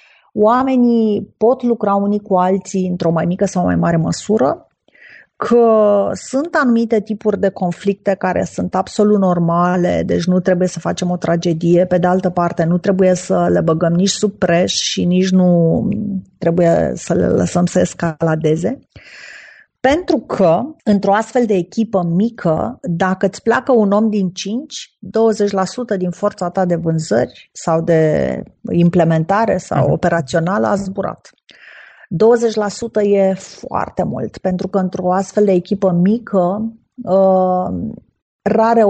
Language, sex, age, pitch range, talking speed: Romanian, female, 30-49, 175-205 Hz, 140 wpm